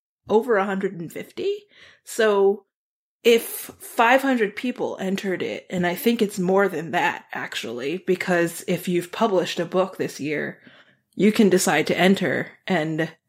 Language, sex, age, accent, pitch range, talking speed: English, female, 20-39, American, 170-210 Hz, 135 wpm